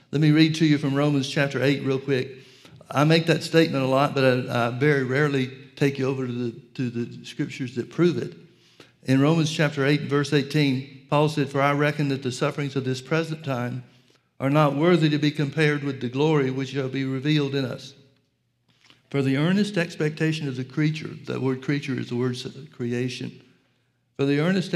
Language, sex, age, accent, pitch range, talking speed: English, male, 60-79, American, 130-150 Hz, 200 wpm